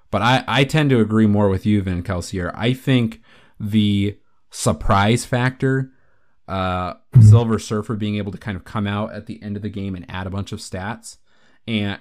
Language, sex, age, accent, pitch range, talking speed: English, male, 30-49, American, 95-110 Hz, 195 wpm